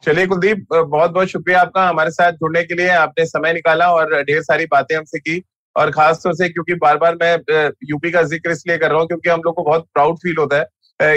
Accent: native